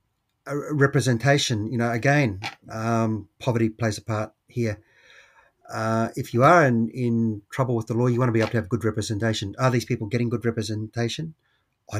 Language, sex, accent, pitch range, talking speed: English, male, Australian, 110-140 Hz, 180 wpm